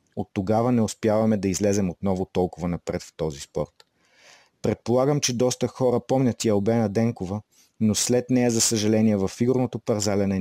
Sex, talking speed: male, 155 wpm